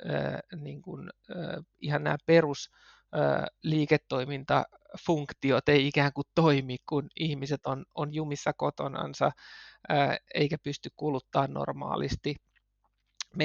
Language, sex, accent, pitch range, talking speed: Finnish, male, native, 140-160 Hz, 80 wpm